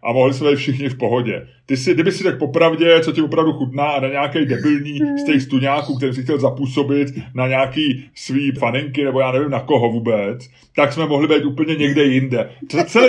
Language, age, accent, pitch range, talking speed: Czech, 30-49, native, 145-190 Hz, 205 wpm